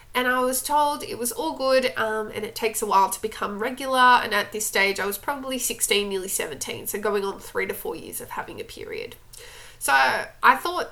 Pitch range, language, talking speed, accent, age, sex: 210-310 Hz, English, 225 wpm, Australian, 20-39, female